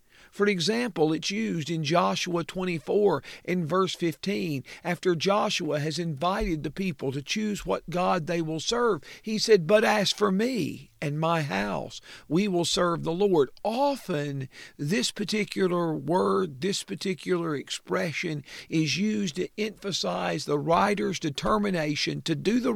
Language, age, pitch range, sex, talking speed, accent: English, 50-69, 160-205 Hz, male, 140 wpm, American